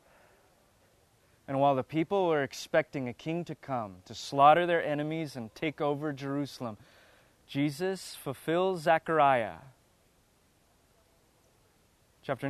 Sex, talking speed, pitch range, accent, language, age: male, 105 wpm, 115-145 Hz, American, English, 20-39